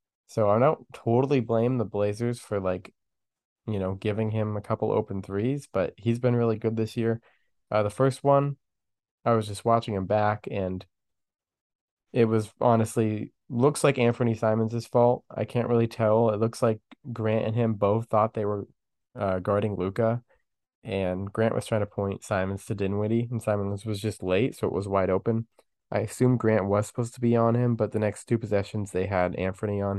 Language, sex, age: English, male, 20-39